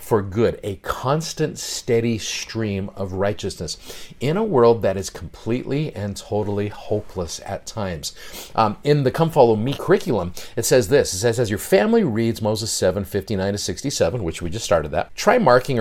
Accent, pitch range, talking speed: American, 100-125 Hz, 180 wpm